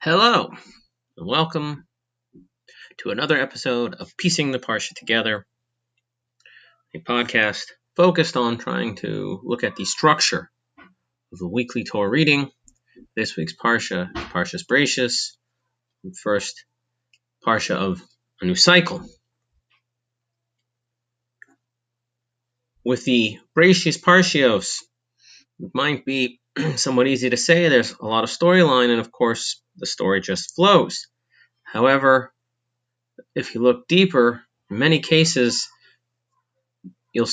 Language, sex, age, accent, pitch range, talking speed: English, male, 30-49, American, 120-130 Hz, 115 wpm